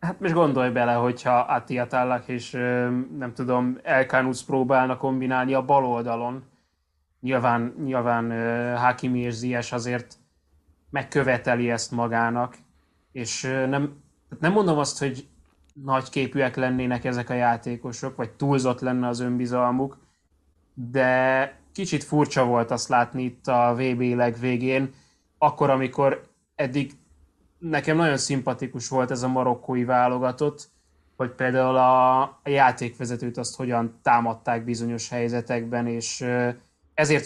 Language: Hungarian